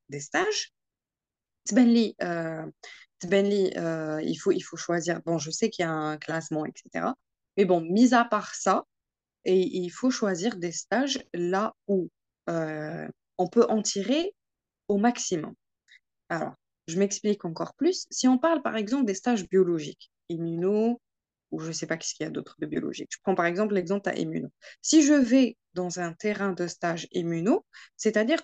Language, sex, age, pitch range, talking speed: Arabic, female, 20-39, 180-255 Hz, 175 wpm